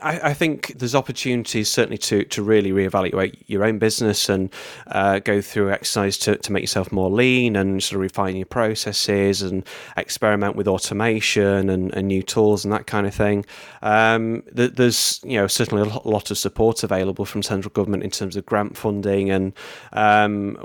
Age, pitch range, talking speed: 30-49, 100-115 Hz, 180 wpm